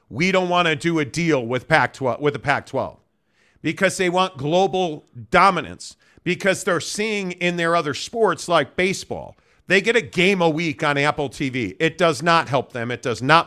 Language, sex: English, male